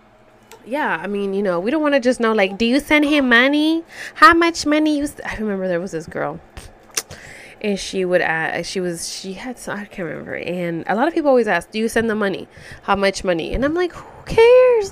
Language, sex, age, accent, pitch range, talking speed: English, female, 20-39, American, 180-265 Hz, 240 wpm